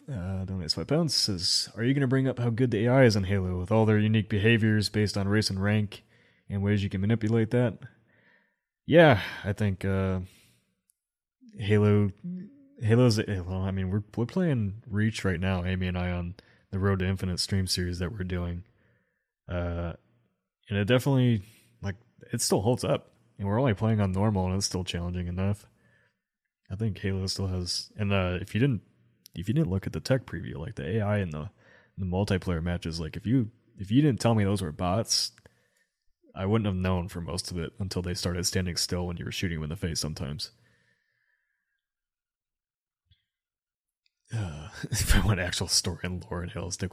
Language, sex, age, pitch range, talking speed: English, male, 20-39, 90-110 Hz, 190 wpm